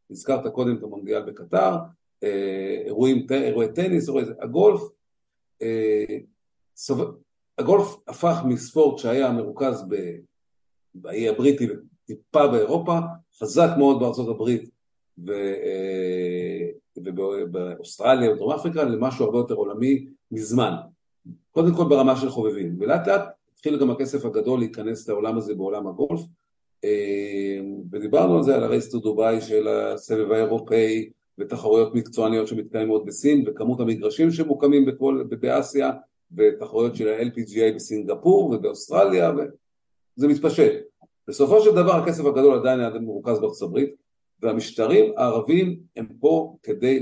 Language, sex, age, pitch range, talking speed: Hebrew, male, 50-69, 110-155 Hz, 115 wpm